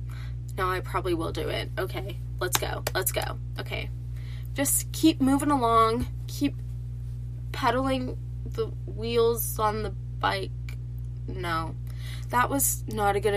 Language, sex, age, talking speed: English, female, 20-39, 130 wpm